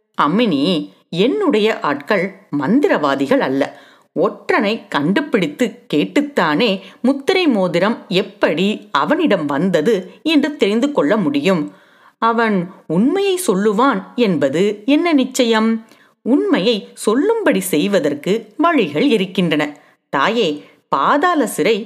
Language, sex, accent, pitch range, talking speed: Tamil, female, native, 190-285 Hz, 80 wpm